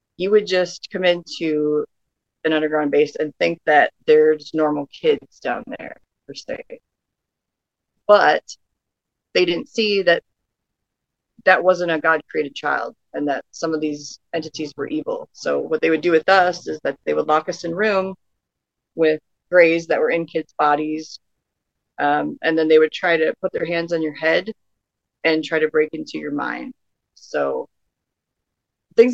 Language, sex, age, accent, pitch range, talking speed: English, female, 30-49, American, 150-175 Hz, 165 wpm